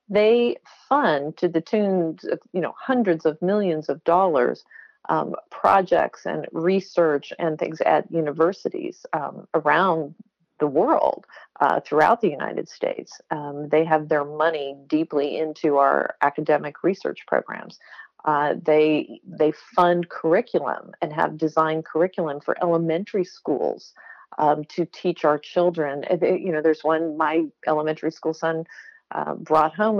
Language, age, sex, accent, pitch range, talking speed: English, 40-59, female, American, 150-180 Hz, 140 wpm